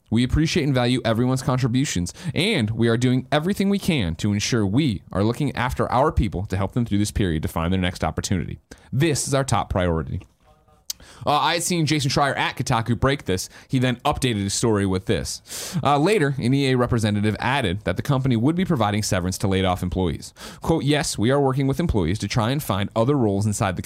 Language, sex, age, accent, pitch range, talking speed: English, male, 30-49, American, 100-135 Hz, 215 wpm